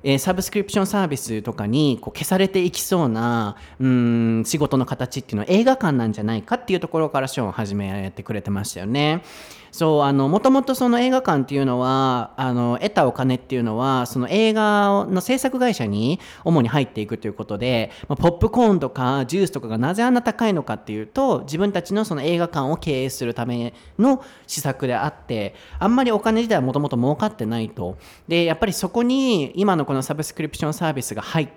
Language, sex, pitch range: Japanese, male, 120-195 Hz